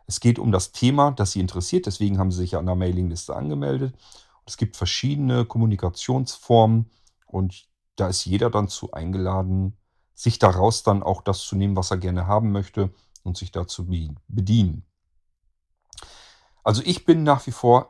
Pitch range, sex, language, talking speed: 95-115 Hz, male, German, 170 wpm